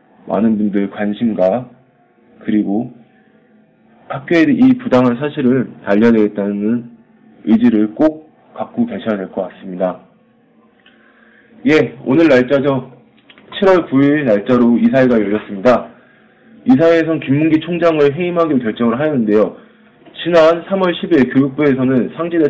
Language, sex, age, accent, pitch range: Korean, male, 20-39, native, 120-195 Hz